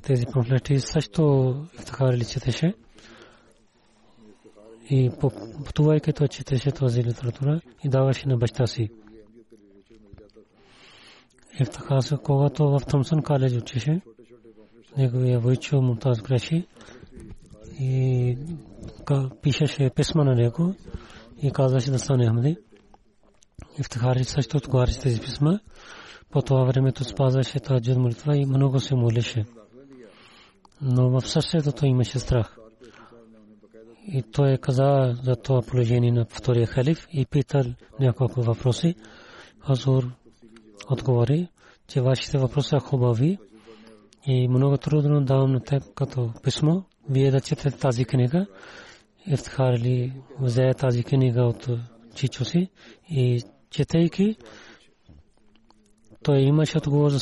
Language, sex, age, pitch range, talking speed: Bulgarian, male, 30-49, 120-140 Hz, 115 wpm